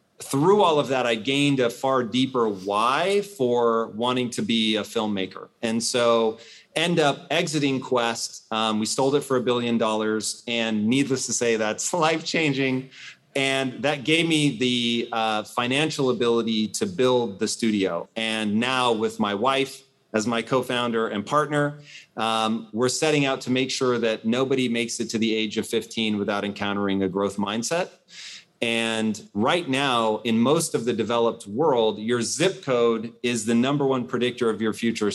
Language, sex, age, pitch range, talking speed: English, male, 30-49, 115-140 Hz, 170 wpm